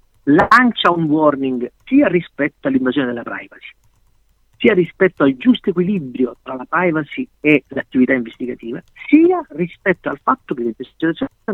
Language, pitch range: Italian, 130-195 Hz